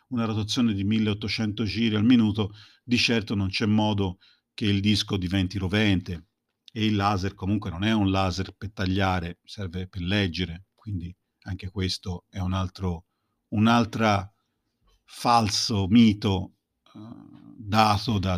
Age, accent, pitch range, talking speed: 50-69, native, 95-115 Hz, 135 wpm